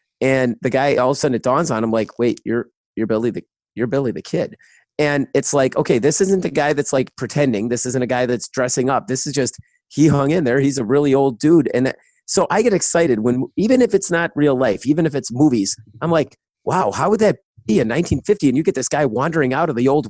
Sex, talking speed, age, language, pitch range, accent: male, 260 wpm, 30-49, English, 125-155 Hz, American